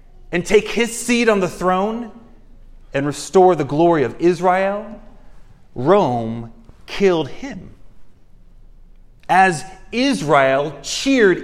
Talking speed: 100 wpm